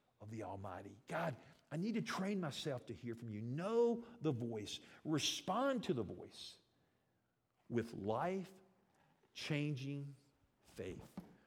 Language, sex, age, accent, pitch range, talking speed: English, male, 50-69, American, 120-180 Hz, 120 wpm